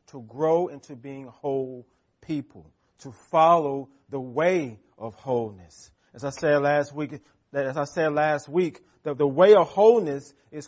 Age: 40-59